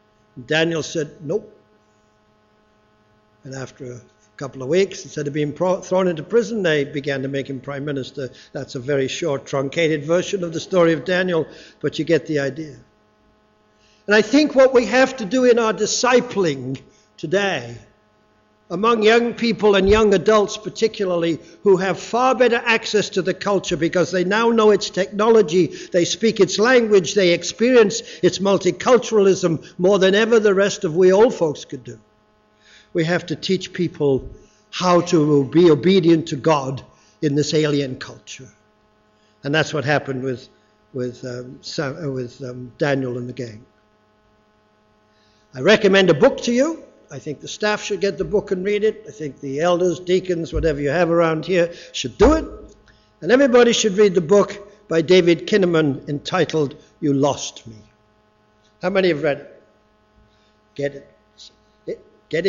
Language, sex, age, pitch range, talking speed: English, male, 60-79, 130-195 Hz, 160 wpm